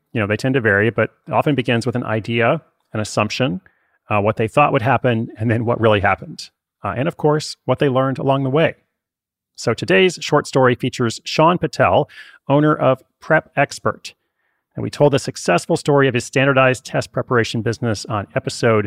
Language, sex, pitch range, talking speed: English, male, 110-140 Hz, 195 wpm